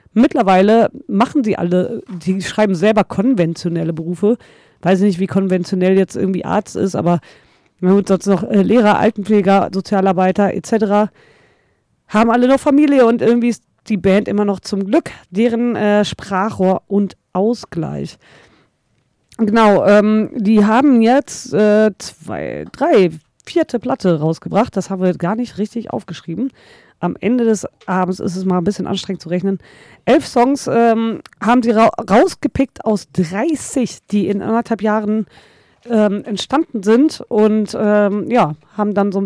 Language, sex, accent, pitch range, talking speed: German, female, German, 195-230 Hz, 145 wpm